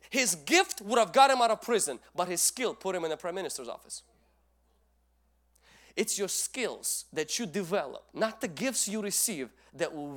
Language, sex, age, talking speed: English, male, 30-49, 190 wpm